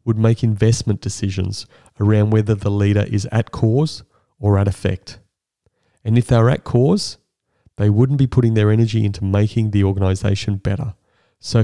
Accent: Australian